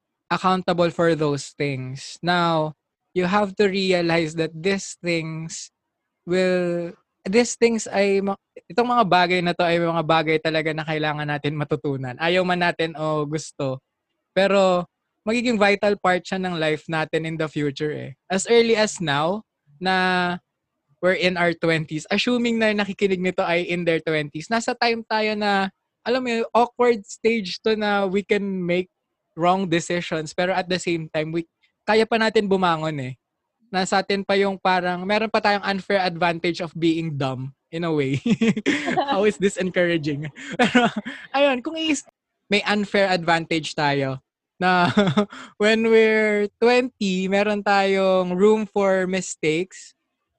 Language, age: English, 20-39